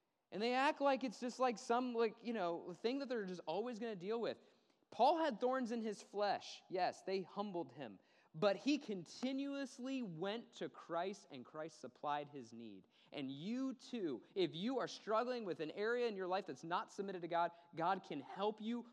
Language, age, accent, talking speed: English, 20-39, American, 200 wpm